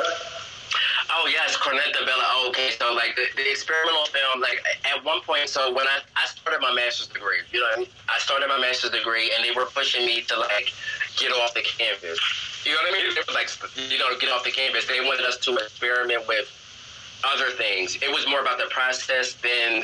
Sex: male